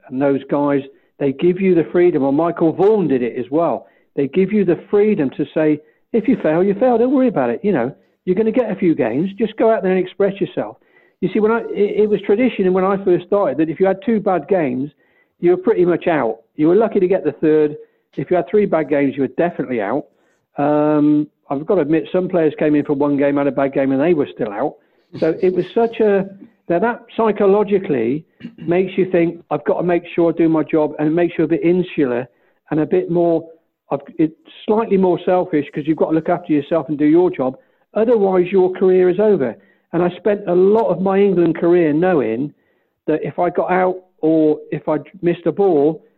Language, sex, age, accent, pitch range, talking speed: English, male, 50-69, British, 155-195 Hz, 240 wpm